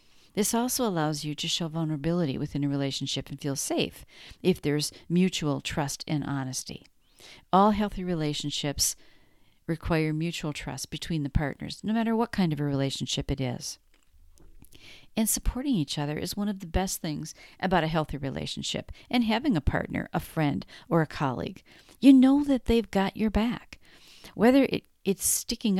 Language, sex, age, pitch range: English, female, 50-69, 150-210 Hz